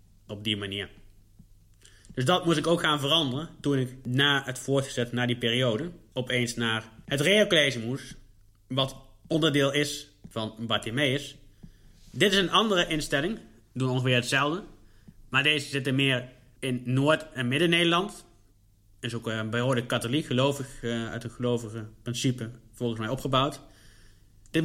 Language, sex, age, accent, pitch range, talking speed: Dutch, male, 20-39, Dutch, 110-140 Hz, 140 wpm